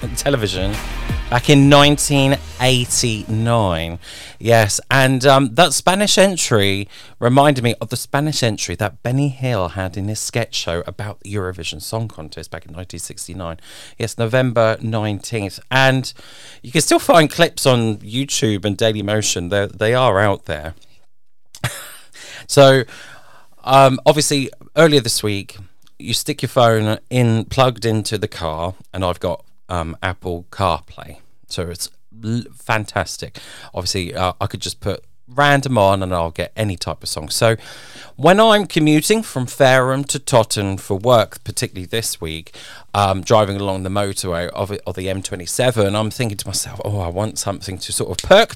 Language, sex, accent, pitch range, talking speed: English, male, British, 95-130 Hz, 150 wpm